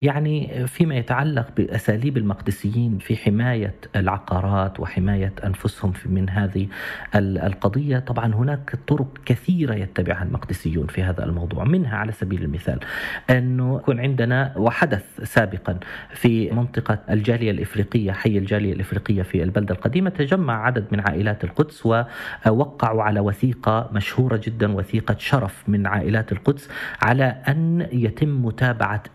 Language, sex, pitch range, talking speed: Arabic, male, 105-140 Hz, 125 wpm